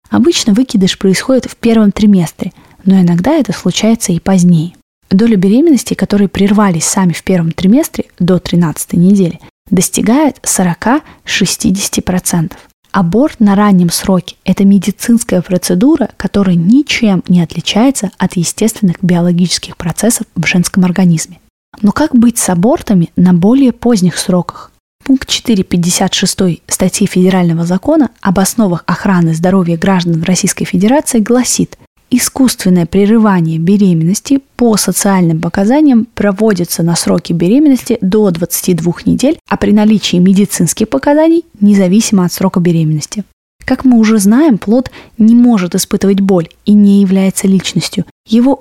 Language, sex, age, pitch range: Russian, female, 20-39, 180-225 Hz